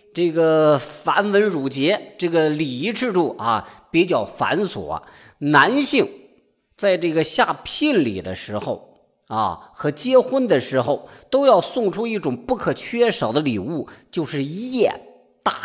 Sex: male